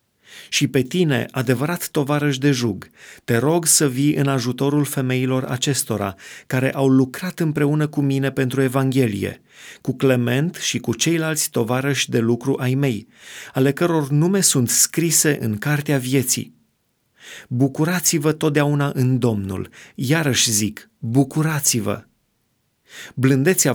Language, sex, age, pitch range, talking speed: Romanian, male, 30-49, 125-150 Hz, 125 wpm